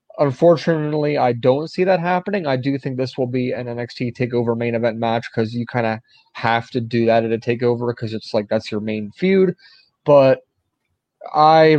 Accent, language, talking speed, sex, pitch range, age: American, English, 195 wpm, male, 120-145 Hz, 30-49